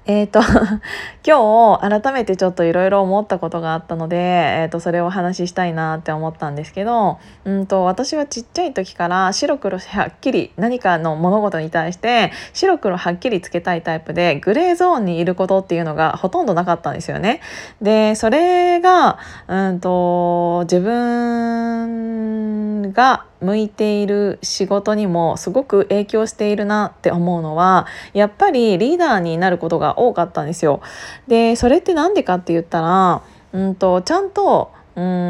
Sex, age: female, 20-39